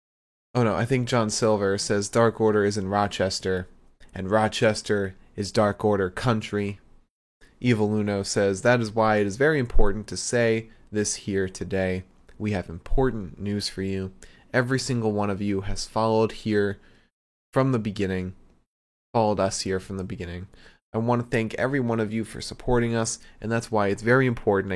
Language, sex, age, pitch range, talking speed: English, male, 20-39, 95-120 Hz, 175 wpm